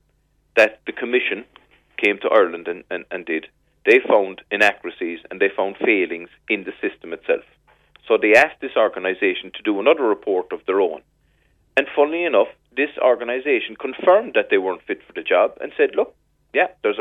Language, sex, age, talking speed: English, male, 40-59, 180 wpm